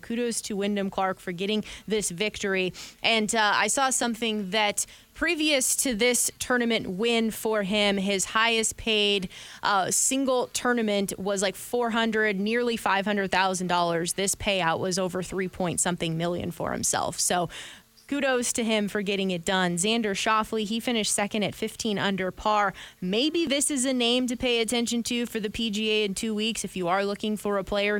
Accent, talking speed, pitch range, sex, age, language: American, 180 wpm, 190-225 Hz, female, 20-39, English